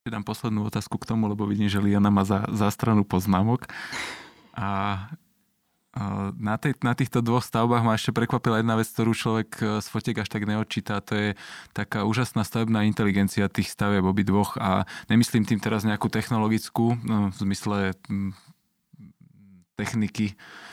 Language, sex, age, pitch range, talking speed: Slovak, male, 20-39, 100-110 Hz, 150 wpm